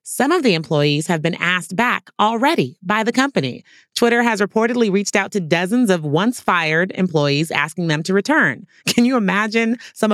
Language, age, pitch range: English, 30-49, 165-215 Hz